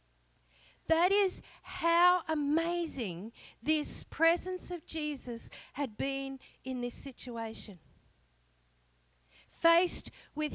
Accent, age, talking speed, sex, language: Australian, 50-69, 85 wpm, female, English